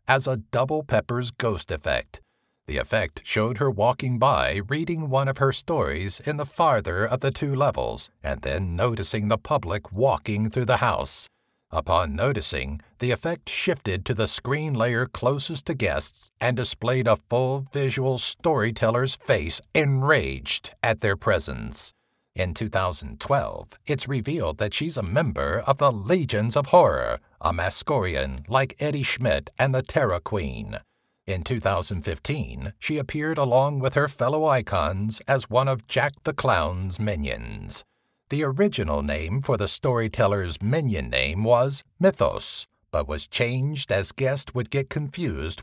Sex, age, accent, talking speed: male, 60-79, American, 145 wpm